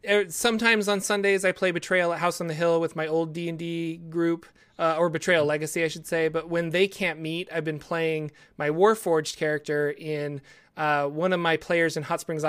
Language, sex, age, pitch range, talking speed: English, male, 30-49, 155-180 Hz, 205 wpm